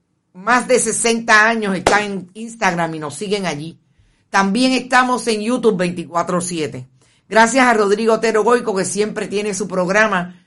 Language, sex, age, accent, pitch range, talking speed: Spanish, female, 50-69, American, 180-225 Hz, 150 wpm